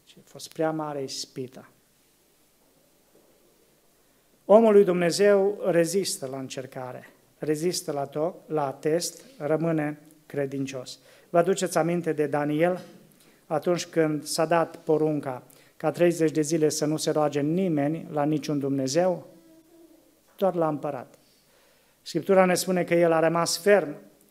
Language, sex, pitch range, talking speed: Romanian, male, 155-205 Hz, 130 wpm